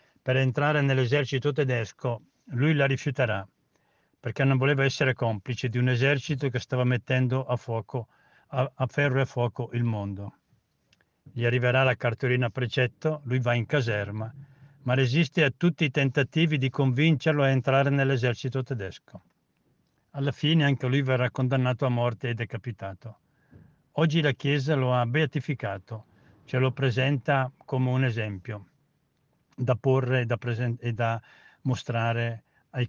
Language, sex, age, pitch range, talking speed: Italian, male, 60-79, 125-145 Hz, 145 wpm